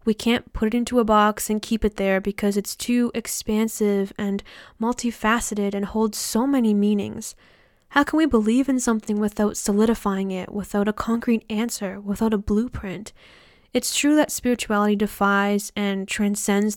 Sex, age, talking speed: female, 10-29, 160 wpm